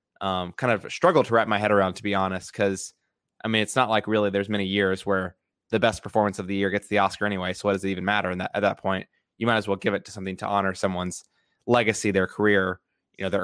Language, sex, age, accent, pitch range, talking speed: English, male, 20-39, American, 95-110 Hz, 265 wpm